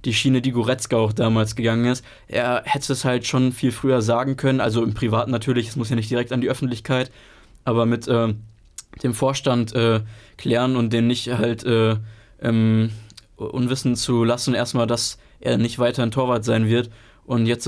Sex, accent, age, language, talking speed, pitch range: male, German, 20-39, German, 190 wpm, 115-125 Hz